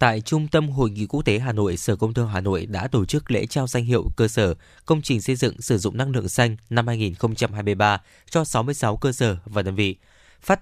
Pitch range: 105-140 Hz